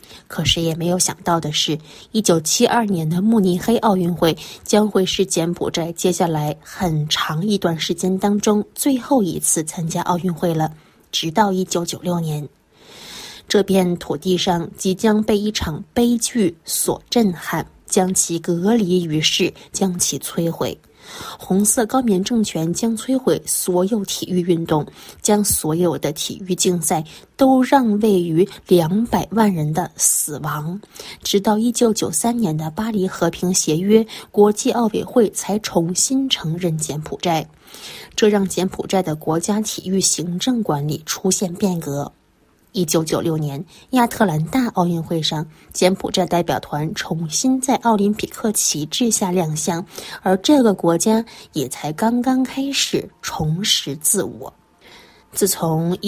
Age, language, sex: 20-39, Chinese, female